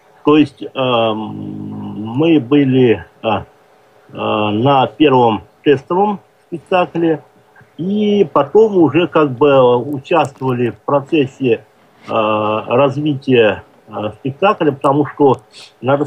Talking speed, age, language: 95 wpm, 50-69, Russian